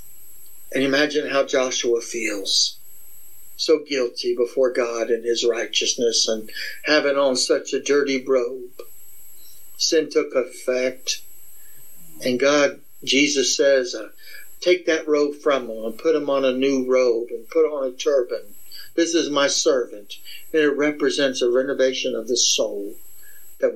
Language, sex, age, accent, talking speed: English, male, 60-79, American, 140 wpm